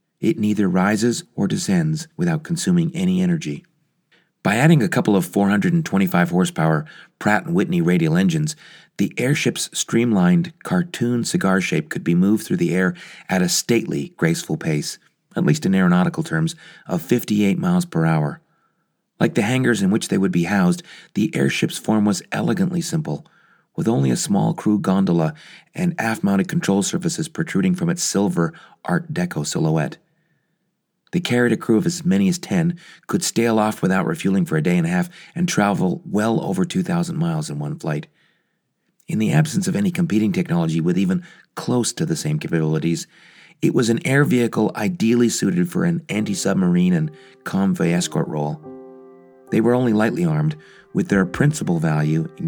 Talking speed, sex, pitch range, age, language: 165 wpm, male, 110-175 Hz, 40-59, English